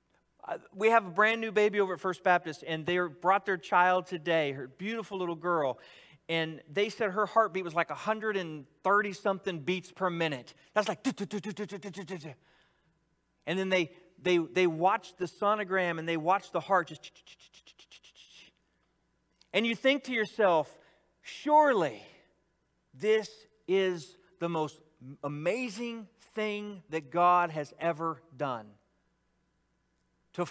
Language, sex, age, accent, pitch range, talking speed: English, male, 40-59, American, 160-205 Hz, 130 wpm